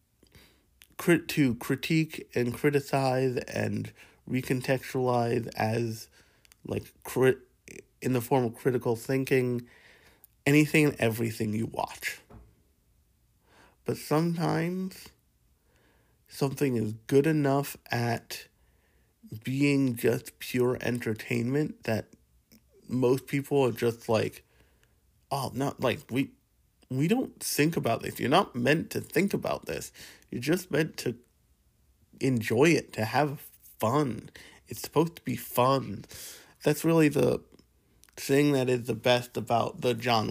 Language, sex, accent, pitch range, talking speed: English, male, American, 110-140 Hz, 115 wpm